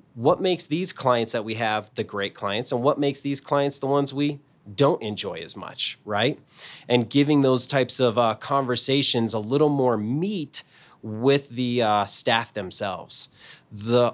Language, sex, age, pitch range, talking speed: English, male, 30-49, 115-140 Hz, 170 wpm